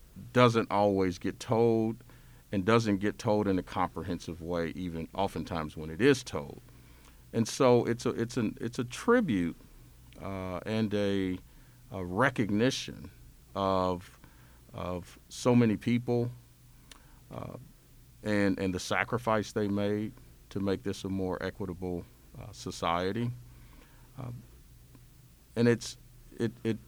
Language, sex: English, male